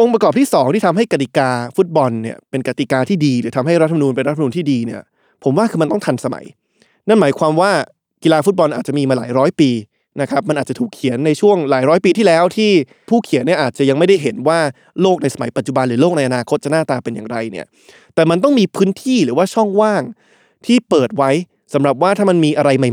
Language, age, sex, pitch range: Thai, 20-39, male, 135-185 Hz